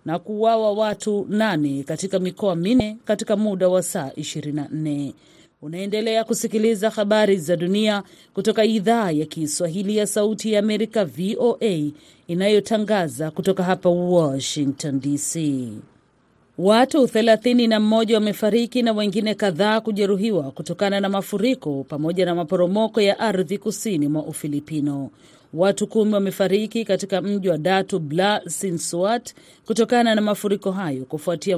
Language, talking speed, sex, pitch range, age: Swahili, 120 wpm, female, 165-215 Hz, 40-59